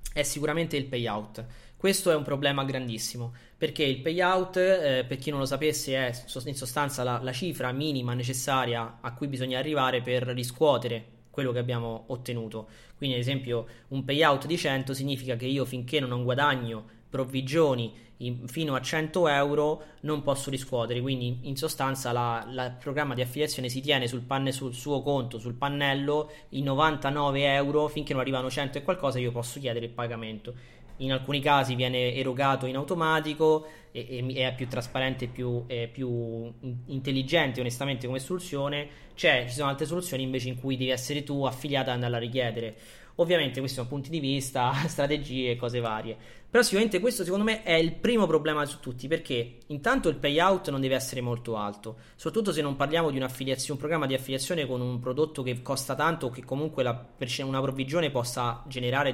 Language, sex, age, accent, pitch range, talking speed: Italian, male, 20-39, native, 125-145 Hz, 175 wpm